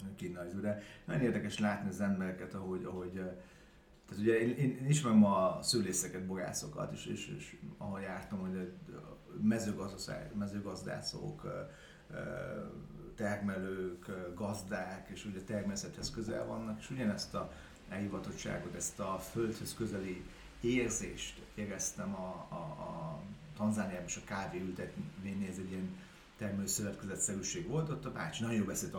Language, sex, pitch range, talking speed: Hungarian, male, 95-155 Hz, 120 wpm